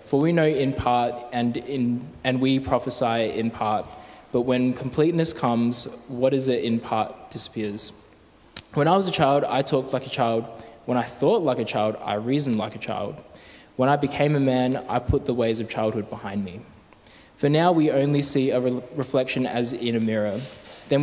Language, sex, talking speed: English, male, 195 wpm